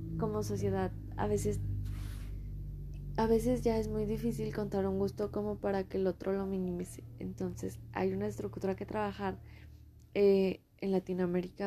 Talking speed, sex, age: 150 wpm, female, 20-39